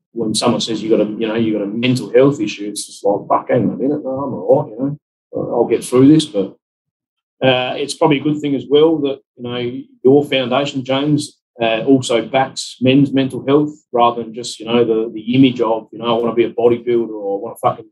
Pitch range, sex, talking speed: 115-135 Hz, male, 250 wpm